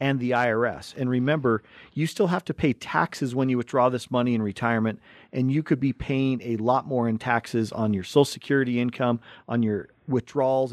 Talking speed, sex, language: 200 wpm, male, English